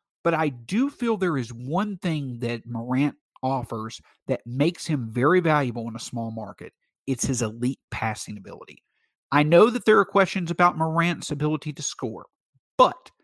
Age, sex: 50-69, male